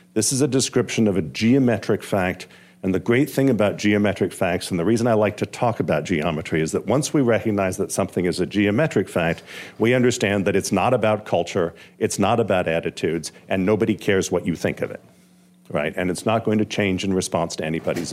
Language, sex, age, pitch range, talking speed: English, male, 50-69, 95-125 Hz, 215 wpm